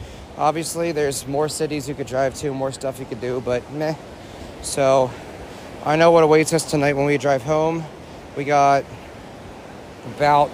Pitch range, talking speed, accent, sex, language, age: 130-160 Hz, 165 wpm, American, male, English, 30-49